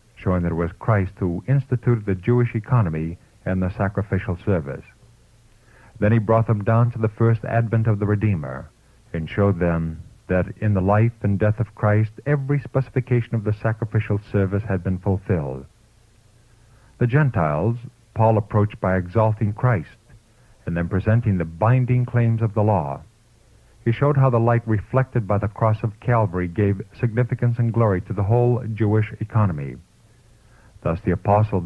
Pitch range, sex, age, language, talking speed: 100-115 Hz, male, 50-69, English, 160 wpm